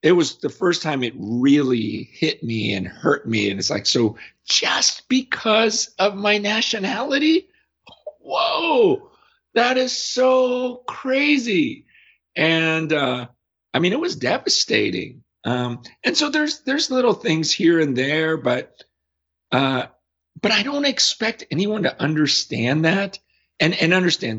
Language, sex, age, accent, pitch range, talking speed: English, male, 50-69, American, 100-160 Hz, 140 wpm